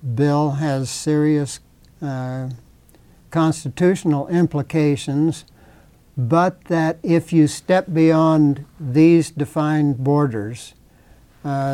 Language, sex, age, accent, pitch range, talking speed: English, male, 60-79, American, 135-155 Hz, 80 wpm